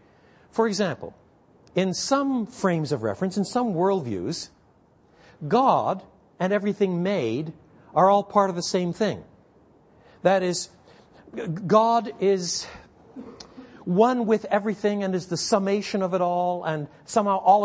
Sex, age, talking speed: male, 60-79, 130 wpm